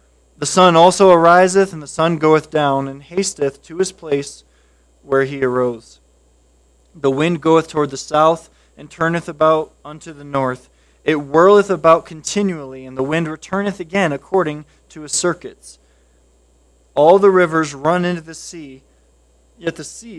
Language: English